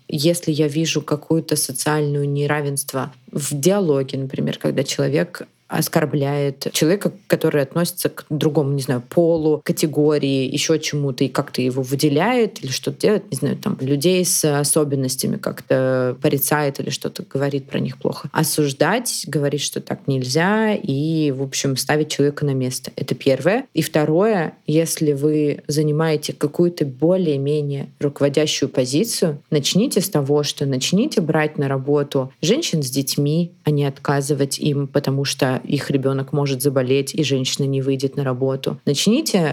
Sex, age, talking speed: female, 20-39, 145 wpm